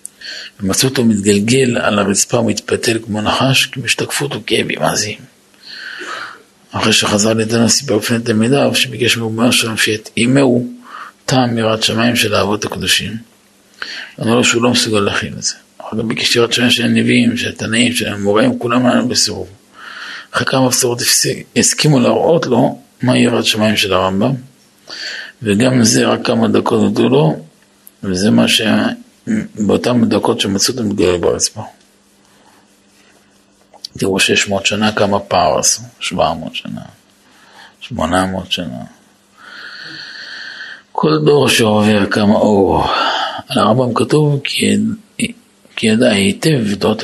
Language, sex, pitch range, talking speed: Hebrew, male, 105-130 Hz, 135 wpm